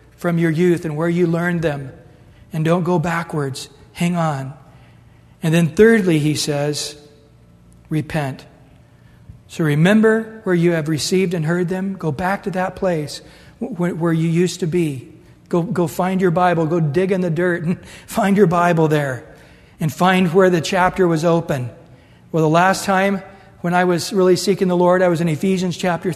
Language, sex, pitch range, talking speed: English, male, 155-195 Hz, 175 wpm